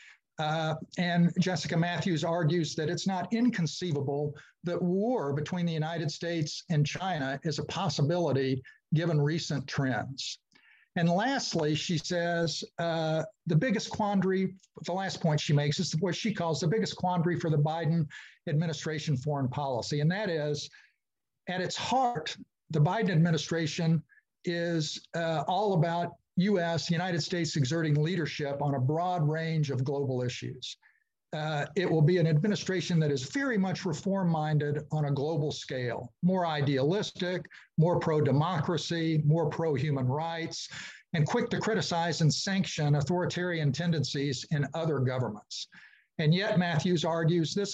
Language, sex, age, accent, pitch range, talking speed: English, male, 50-69, American, 150-180 Hz, 140 wpm